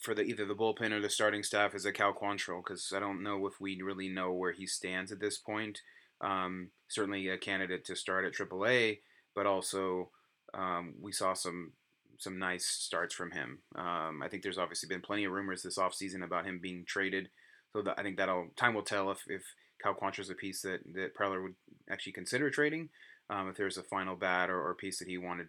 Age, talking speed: 30-49, 225 wpm